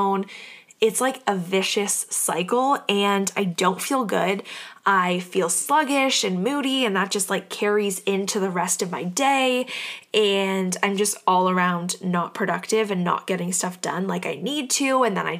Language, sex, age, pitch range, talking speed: English, female, 10-29, 185-230 Hz, 175 wpm